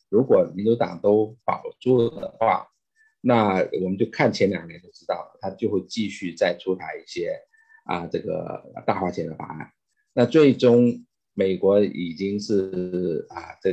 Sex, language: male, Chinese